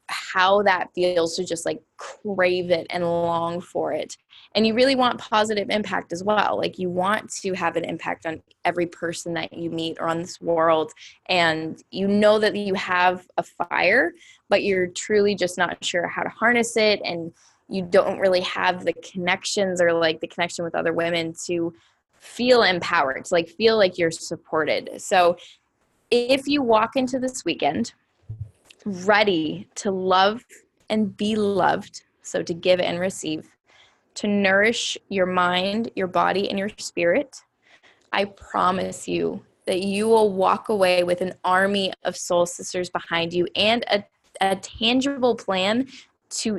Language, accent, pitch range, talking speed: English, American, 175-210 Hz, 165 wpm